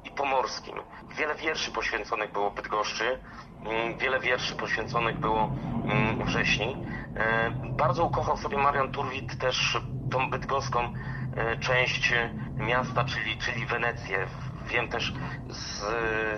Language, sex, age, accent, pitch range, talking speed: Polish, male, 40-59, native, 110-130 Hz, 105 wpm